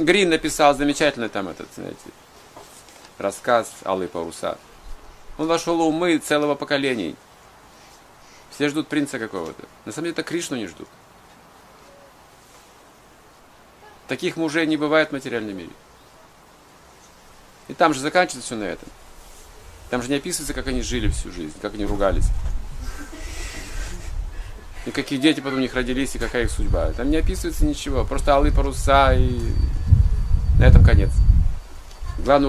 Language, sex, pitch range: Russian, male, 95-145 Hz